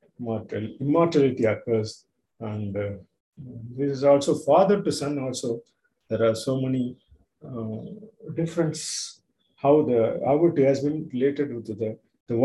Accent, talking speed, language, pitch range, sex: native, 130 wpm, Tamil, 115-135 Hz, male